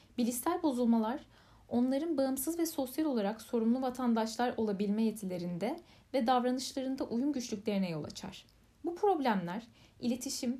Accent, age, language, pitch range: native, 10-29, Turkish, 210-270 Hz